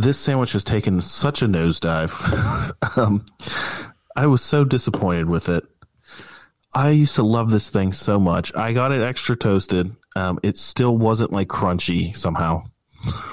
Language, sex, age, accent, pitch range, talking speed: English, male, 30-49, American, 95-125 Hz, 155 wpm